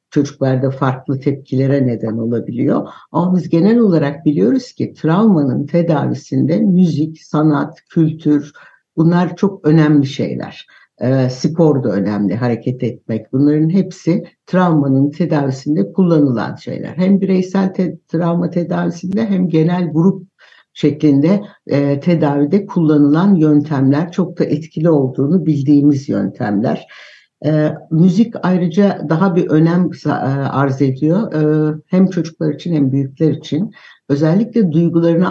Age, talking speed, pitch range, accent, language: 60-79, 115 wpm, 140-175 Hz, native, Turkish